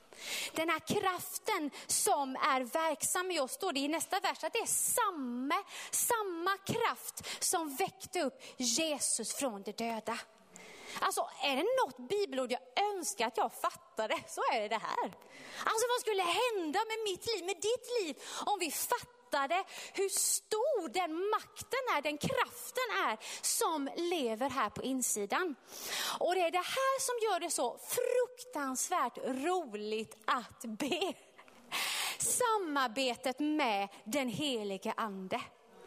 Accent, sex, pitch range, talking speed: native, female, 265-390 Hz, 145 wpm